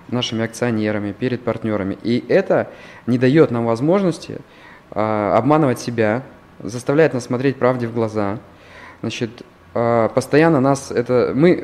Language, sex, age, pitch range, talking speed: Russian, male, 20-39, 110-135 Hz, 130 wpm